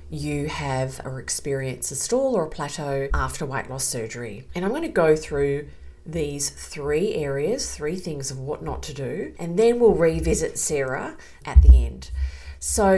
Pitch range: 130-160 Hz